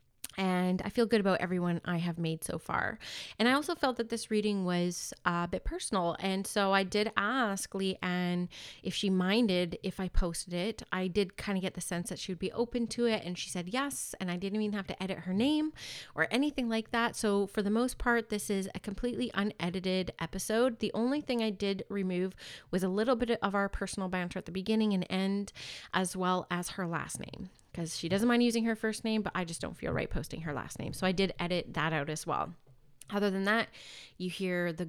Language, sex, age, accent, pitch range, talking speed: English, female, 30-49, American, 180-220 Hz, 230 wpm